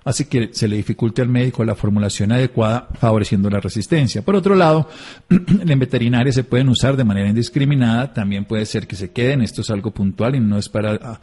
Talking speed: 205 wpm